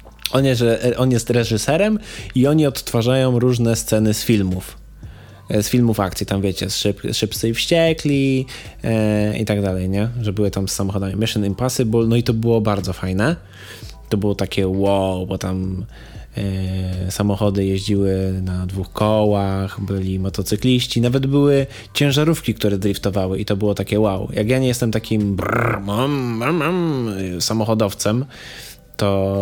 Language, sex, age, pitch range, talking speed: Polish, male, 20-39, 100-140 Hz, 135 wpm